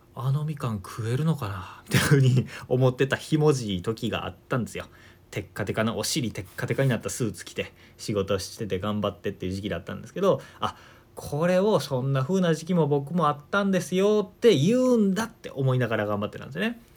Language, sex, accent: Japanese, male, native